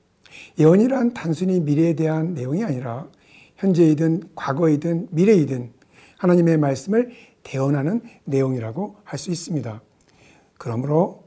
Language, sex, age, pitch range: Korean, male, 60-79, 135-195 Hz